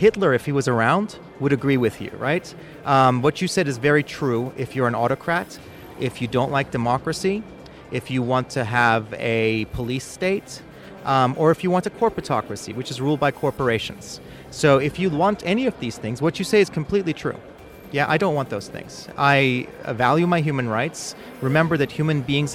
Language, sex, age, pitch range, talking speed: Polish, male, 30-49, 125-160 Hz, 200 wpm